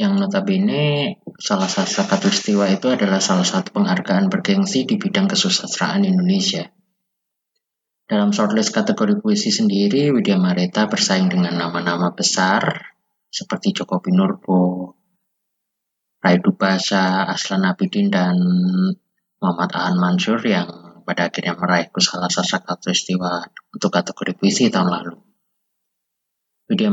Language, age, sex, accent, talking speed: Indonesian, 20-39, male, native, 110 wpm